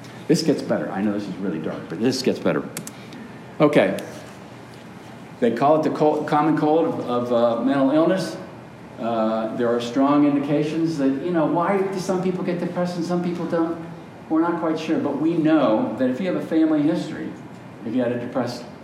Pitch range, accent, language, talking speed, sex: 120-180 Hz, American, English, 200 wpm, male